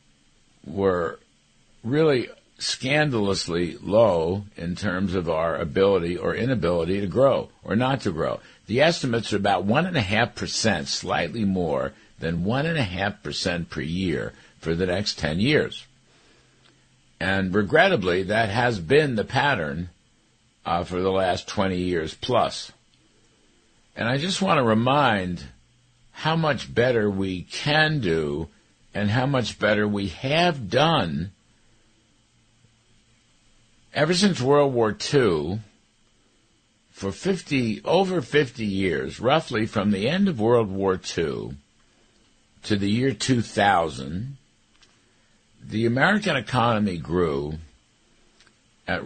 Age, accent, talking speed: 60-79, American, 115 wpm